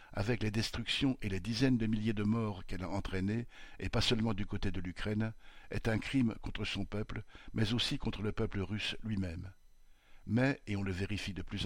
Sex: male